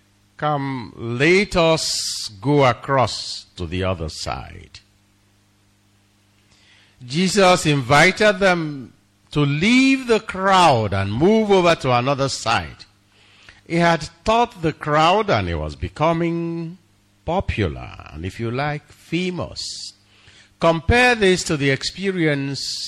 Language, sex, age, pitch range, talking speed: English, male, 50-69, 100-160 Hz, 110 wpm